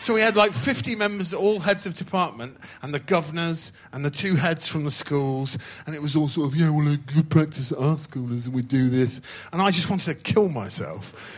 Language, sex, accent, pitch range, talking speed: English, male, British, 115-150 Hz, 230 wpm